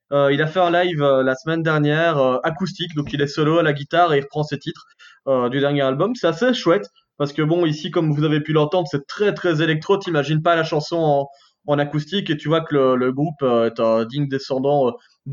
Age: 20-39